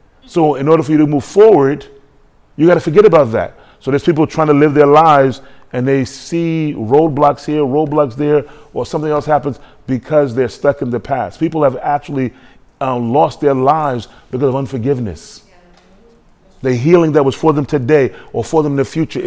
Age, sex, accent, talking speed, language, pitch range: 30-49, male, American, 195 wpm, English, 130-150 Hz